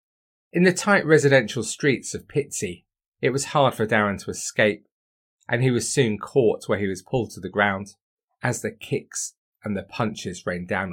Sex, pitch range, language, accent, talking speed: male, 105-135 Hz, English, British, 185 wpm